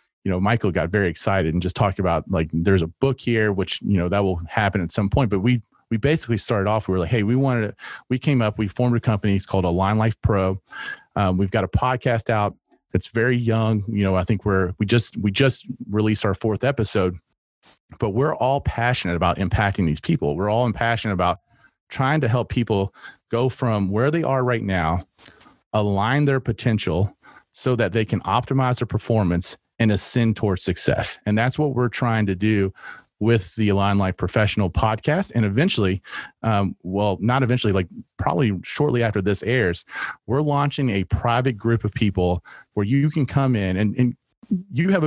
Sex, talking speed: male, 200 wpm